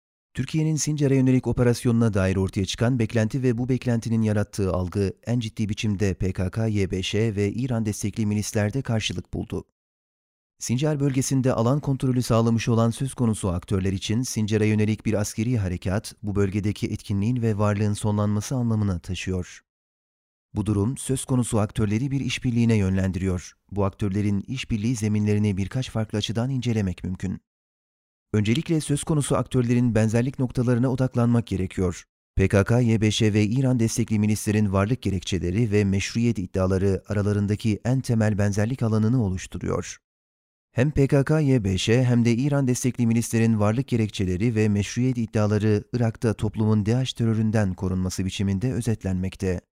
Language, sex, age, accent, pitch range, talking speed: Turkish, male, 40-59, native, 100-120 Hz, 130 wpm